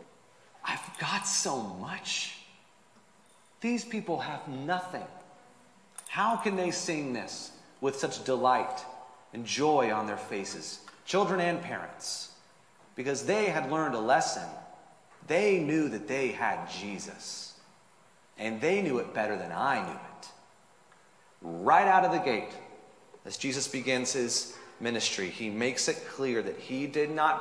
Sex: male